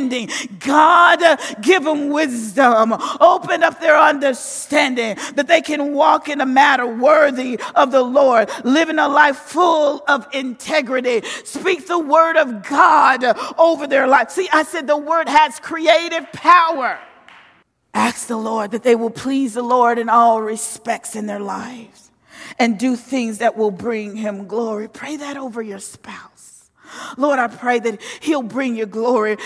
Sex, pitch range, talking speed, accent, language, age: female, 240-310 Hz, 155 wpm, American, English, 40-59